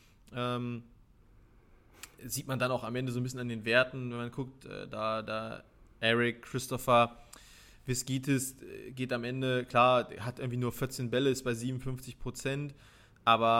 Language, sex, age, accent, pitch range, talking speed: German, male, 20-39, German, 120-140 Hz, 160 wpm